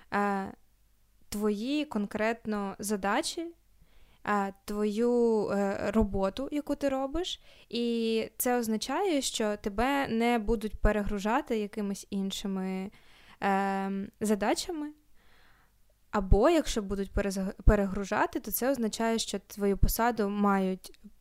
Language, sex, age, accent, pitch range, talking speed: Ukrainian, female, 20-39, native, 200-235 Hz, 85 wpm